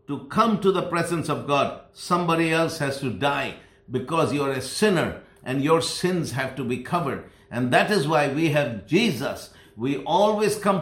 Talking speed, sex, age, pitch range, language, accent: 185 wpm, male, 60-79, 145-180 Hz, English, Indian